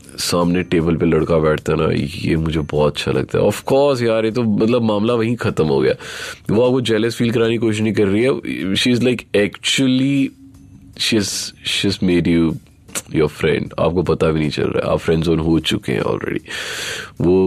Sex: male